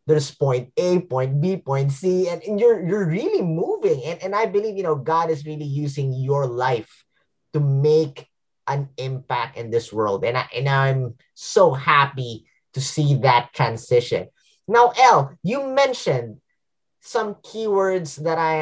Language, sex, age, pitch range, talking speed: English, male, 20-39, 135-205 Hz, 160 wpm